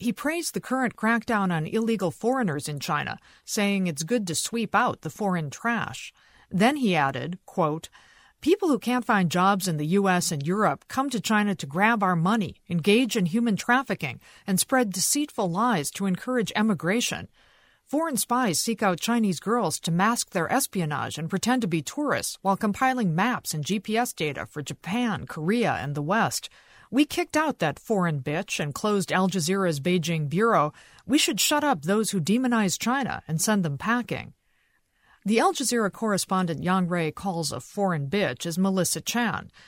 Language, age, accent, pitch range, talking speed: English, 50-69, American, 170-235 Hz, 175 wpm